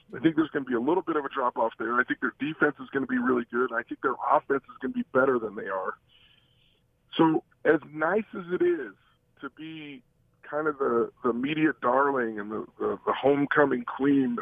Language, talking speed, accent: English, 230 wpm, American